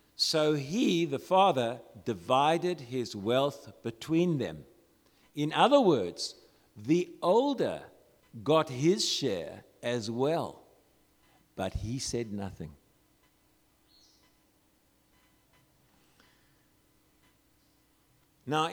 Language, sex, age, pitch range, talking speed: English, male, 50-69, 130-190 Hz, 75 wpm